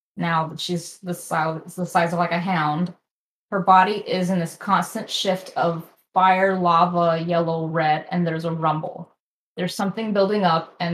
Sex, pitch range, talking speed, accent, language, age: female, 175-235 Hz, 165 wpm, American, English, 20-39